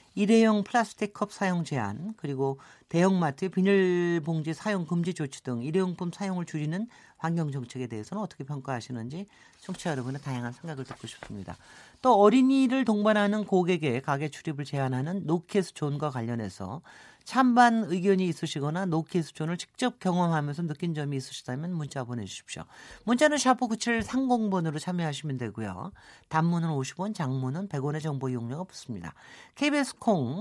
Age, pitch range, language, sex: 40-59, 140-210 Hz, Korean, male